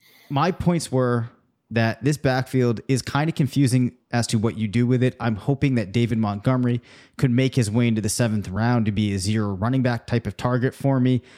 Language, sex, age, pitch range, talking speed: English, male, 30-49, 120-135 Hz, 215 wpm